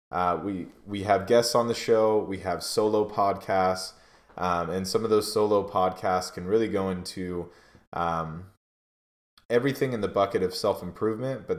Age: 20-39